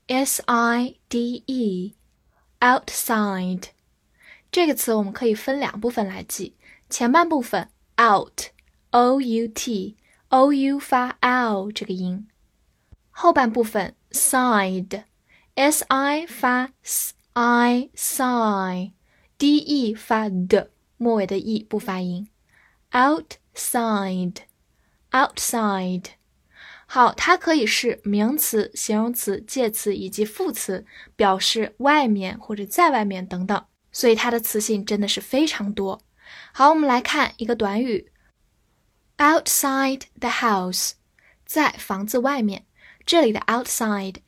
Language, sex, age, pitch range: Chinese, female, 10-29, 205-265 Hz